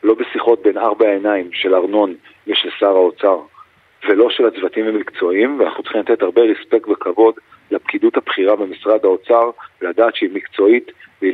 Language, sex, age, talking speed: Hebrew, male, 40-59, 150 wpm